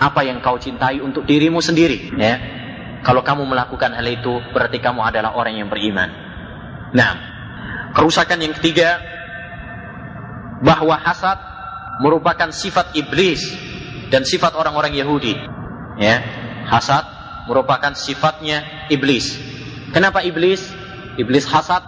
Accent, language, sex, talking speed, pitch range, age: native, Indonesian, male, 110 wpm, 135-155 Hz, 30-49